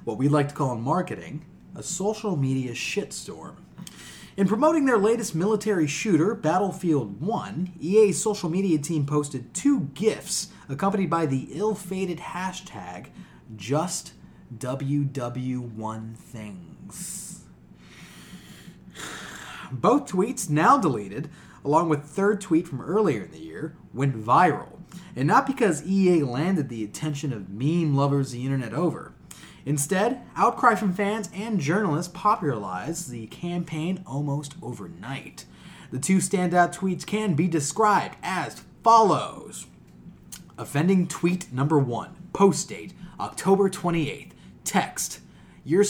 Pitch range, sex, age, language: 140-195 Hz, male, 30-49, English